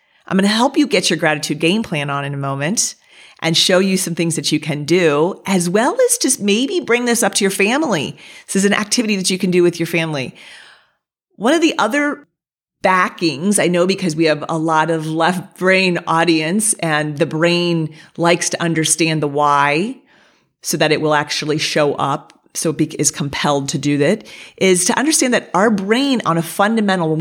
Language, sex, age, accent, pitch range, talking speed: English, female, 30-49, American, 155-195 Hz, 205 wpm